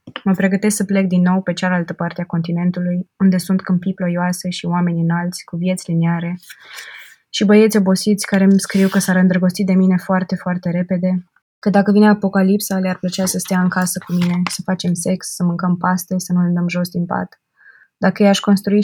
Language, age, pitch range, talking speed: Romanian, 20-39, 170-185 Hz, 200 wpm